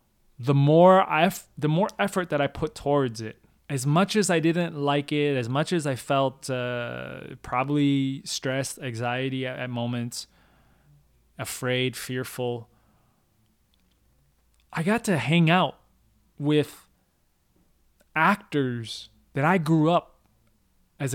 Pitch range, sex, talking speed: 110-145 Hz, male, 130 wpm